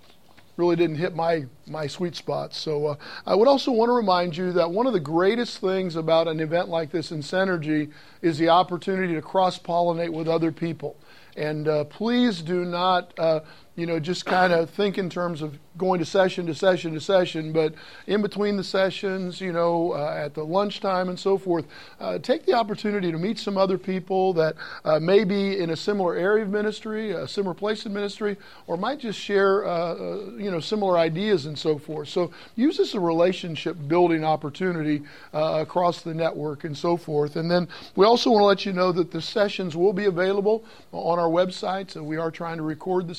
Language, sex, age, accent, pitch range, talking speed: English, male, 50-69, American, 160-195 Hz, 205 wpm